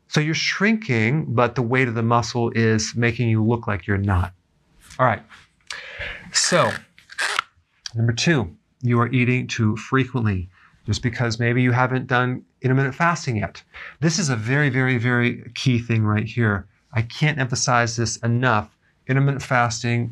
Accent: American